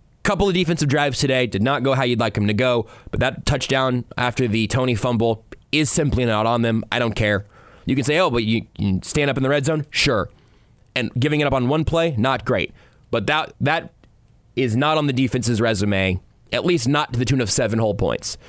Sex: male